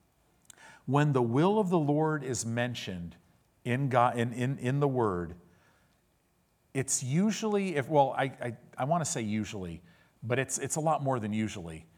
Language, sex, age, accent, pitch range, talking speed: English, male, 50-69, American, 100-130 Hz, 170 wpm